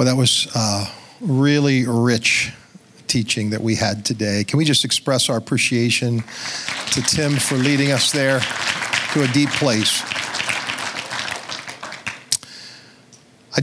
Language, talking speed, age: English, 125 wpm, 50-69